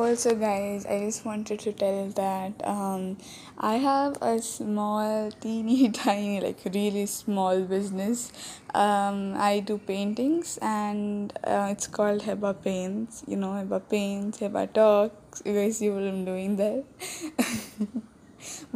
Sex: female